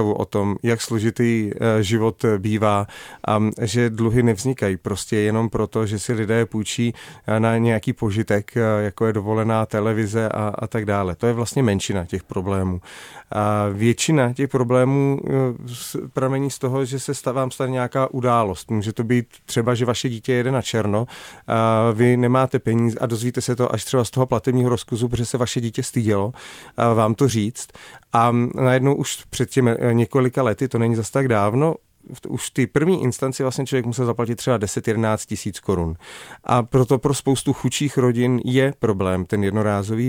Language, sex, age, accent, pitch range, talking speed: Czech, male, 40-59, native, 110-130 Hz, 170 wpm